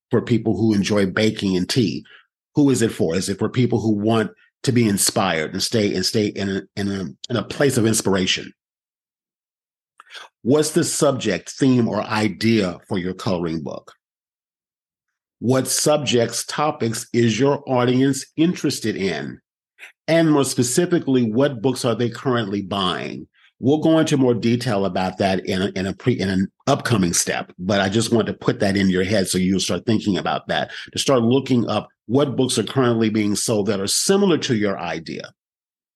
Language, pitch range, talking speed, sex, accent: English, 100-130 Hz, 180 wpm, male, American